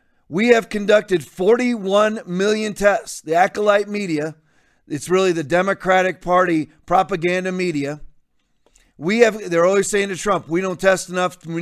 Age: 40-59